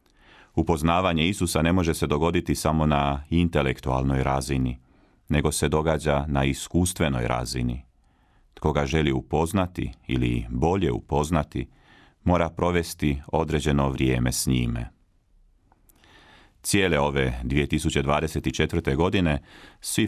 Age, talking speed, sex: 40-59, 100 wpm, male